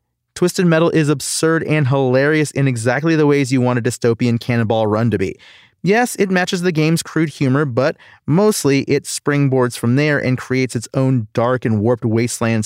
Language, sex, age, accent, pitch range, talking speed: English, male, 30-49, American, 125-160 Hz, 185 wpm